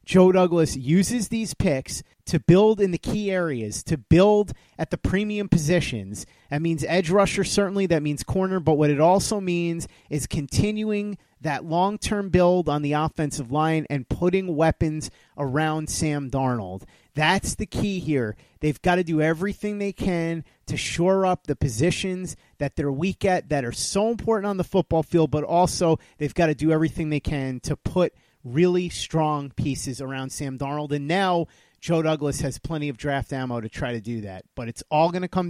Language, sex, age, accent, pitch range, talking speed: English, male, 30-49, American, 145-180 Hz, 185 wpm